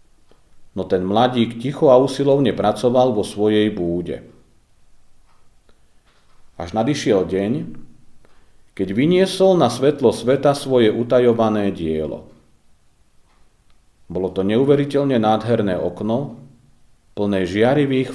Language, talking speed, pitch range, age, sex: Slovak, 95 wpm, 100-140 Hz, 40-59, male